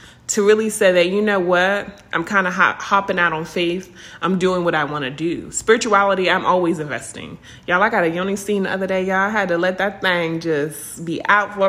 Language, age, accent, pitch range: English, 20-39, American, 175-210 Hz